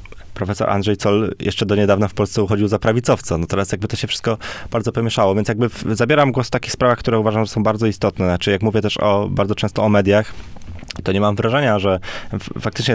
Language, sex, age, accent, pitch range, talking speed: Polish, male, 20-39, native, 95-110 Hz, 210 wpm